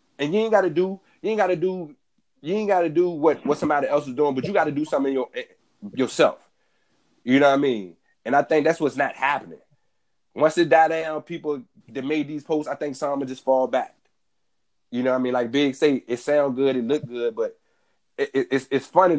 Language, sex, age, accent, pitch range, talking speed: English, male, 30-49, American, 135-185 Hz, 230 wpm